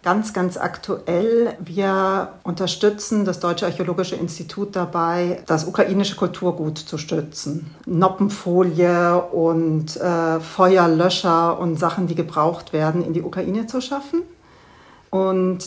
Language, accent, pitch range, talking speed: German, German, 170-200 Hz, 115 wpm